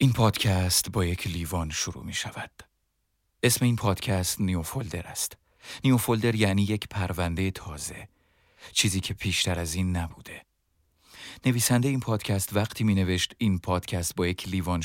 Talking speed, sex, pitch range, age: 140 wpm, male, 85-100 Hz, 40-59